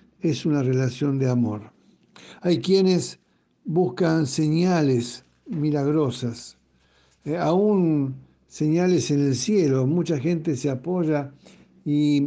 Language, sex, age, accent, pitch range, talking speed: Spanish, male, 60-79, Argentinian, 135-170 Hz, 105 wpm